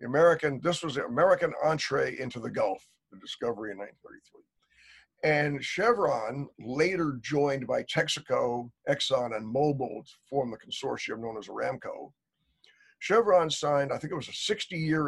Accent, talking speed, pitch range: American, 145 wpm, 125-170 Hz